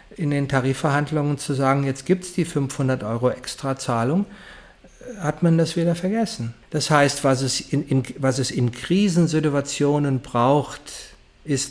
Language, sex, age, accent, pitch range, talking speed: German, male, 50-69, German, 125-165 Hz, 135 wpm